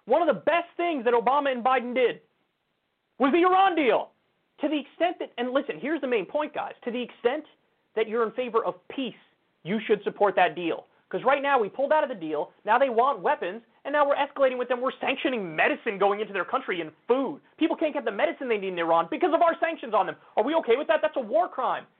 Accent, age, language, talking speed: American, 30-49, English, 250 wpm